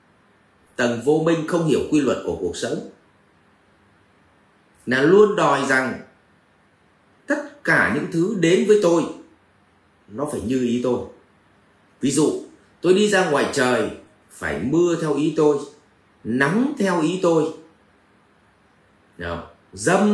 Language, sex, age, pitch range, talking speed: Vietnamese, male, 30-49, 125-200 Hz, 130 wpm